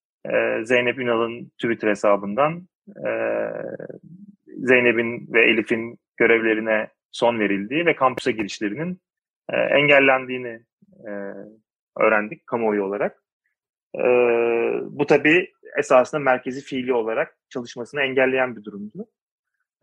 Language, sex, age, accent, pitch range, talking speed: Turkish, male, 30-49, native, 115-150 Hz, 80 wpm